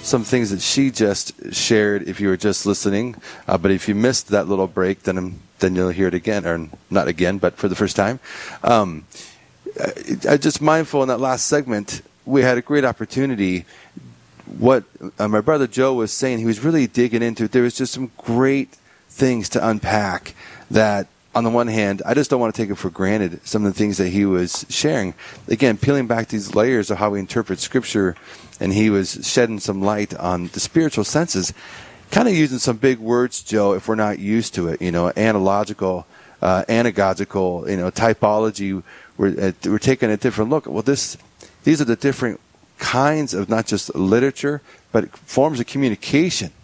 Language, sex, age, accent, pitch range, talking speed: English, male, 30-49, American, 95-125 Hz, 195 wpm